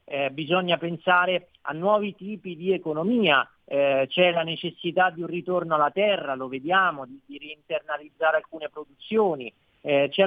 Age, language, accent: 40-59, Italian, native